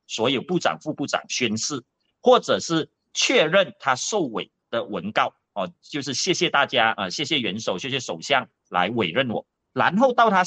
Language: Chinese